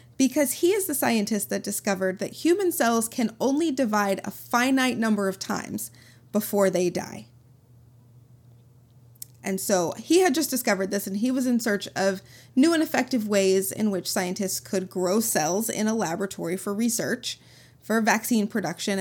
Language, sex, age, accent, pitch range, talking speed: English, female, 30-49, American, 175-235 Hz, 165 wpm